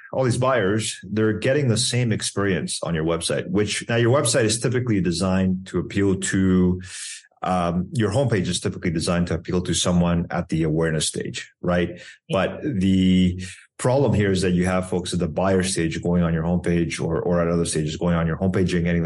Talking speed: 200 wpm